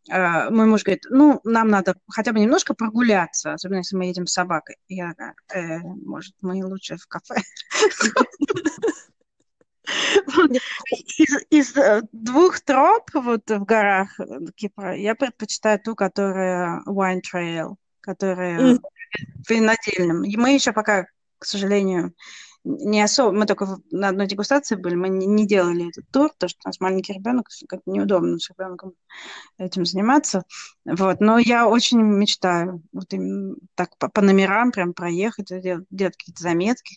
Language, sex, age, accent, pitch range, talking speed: Russian, female, 20-39, native, 185-245 Hz, 135 wpm